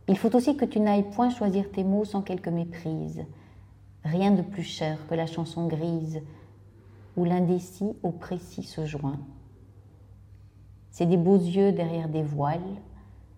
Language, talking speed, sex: French, 155 wpm, female